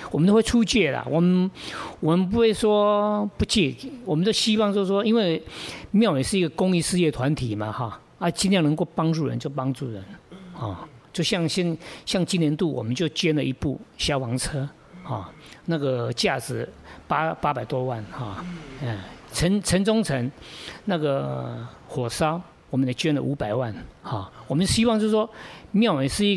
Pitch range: 140-190 Hz